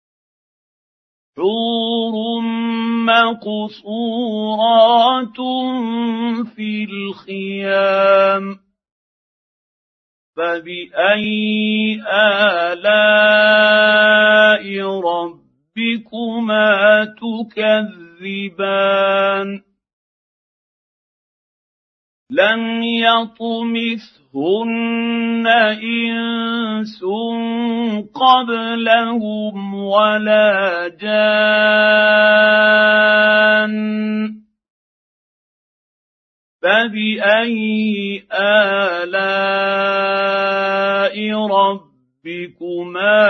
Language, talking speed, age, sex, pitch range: Arabic, 30 wpm, 50-69, male, 195-230 Hz